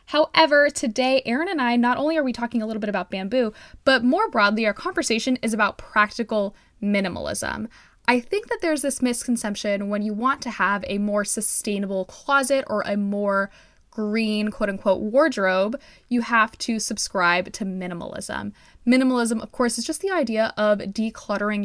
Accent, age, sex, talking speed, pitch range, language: American, 10-29, female, 170 wpm, 205-270 Hz, English